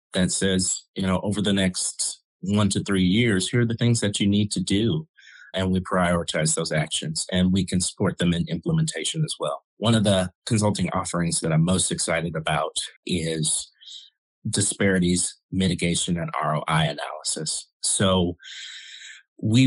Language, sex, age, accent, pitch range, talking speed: English, male, 30-49, American, 90-115 Hz, 160 wpm